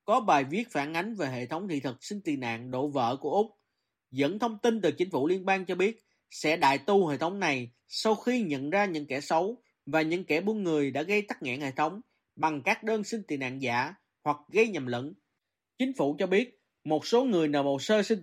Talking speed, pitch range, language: 240 wpm, 140-205 Hz, Vietnamese